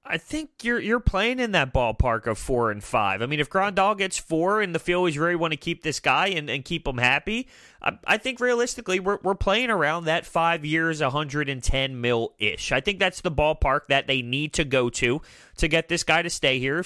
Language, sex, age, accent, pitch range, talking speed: English, male, 30-49, American, 125-200 Hz, 230 wpm